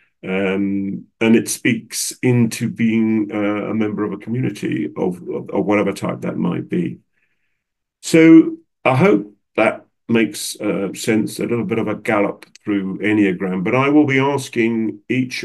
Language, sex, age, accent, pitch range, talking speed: English, male, 40-59, British, 100-120 Hz, 155 wpm